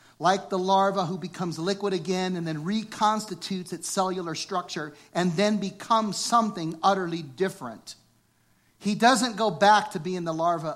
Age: 50-69